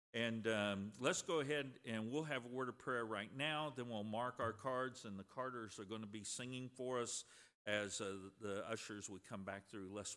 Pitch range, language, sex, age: 100-130 Hz, English, male, 50-69